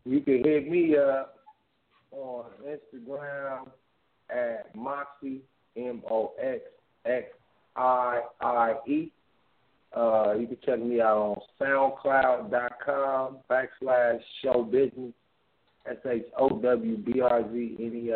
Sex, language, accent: male, English, American